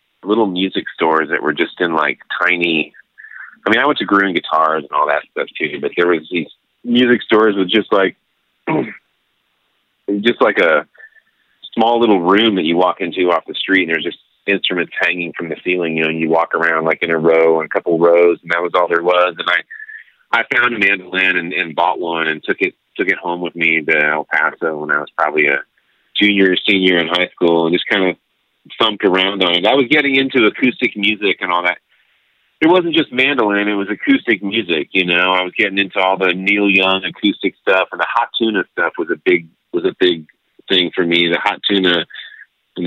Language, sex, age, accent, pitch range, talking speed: English, male, 30-49, American, 85-105 Hz, 220 wpm